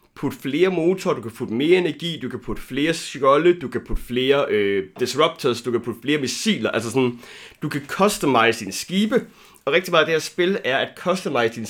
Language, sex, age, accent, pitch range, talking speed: Danish, male, 30-49, native, 120-175 Hz, 215 wpm